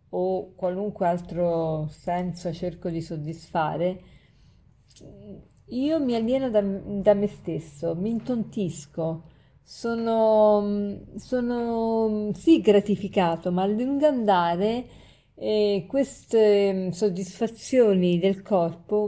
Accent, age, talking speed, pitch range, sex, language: native, 40-59, 90 wpm, 175-225 Hz, female, Italian